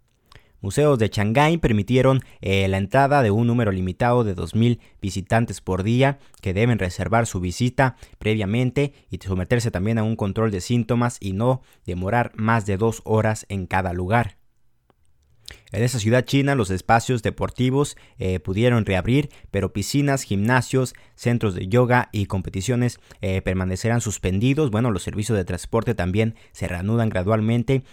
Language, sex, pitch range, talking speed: Spanish, male, 95-120 Hz, 150 wpm